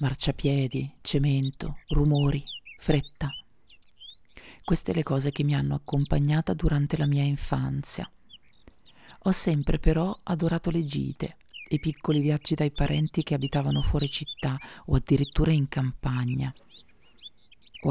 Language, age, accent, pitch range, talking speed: Italian, 40-59, native, 140-160 Hz, 115 wpm